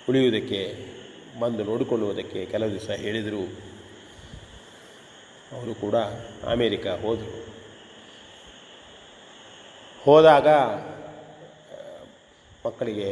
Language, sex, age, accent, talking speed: Kannada, male, 30-49, native, 55 wpm